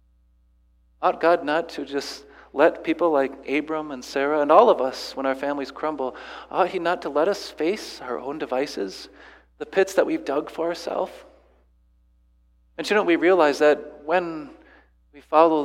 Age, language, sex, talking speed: 40-59, English, male, 170 wpm